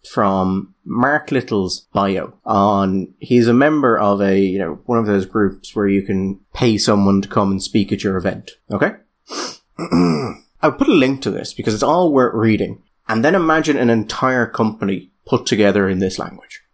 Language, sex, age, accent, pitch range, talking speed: English, male, 30-49, British, 100-145 Hz, 185 wpm